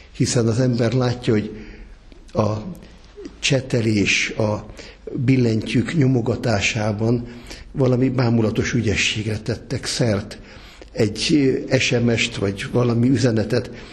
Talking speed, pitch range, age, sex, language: 85 wpm, 110-130 Hz, 60-79, male, Hungarian